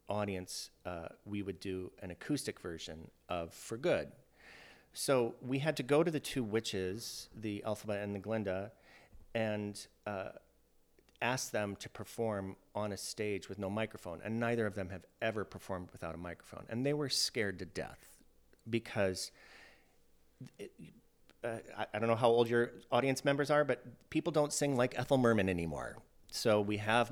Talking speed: 170 wpm